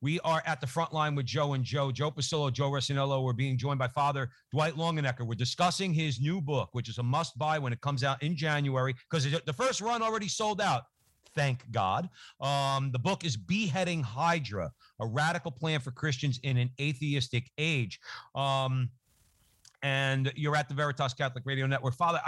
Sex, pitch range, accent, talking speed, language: male, 125-155 Hz, American, 190 wpm, English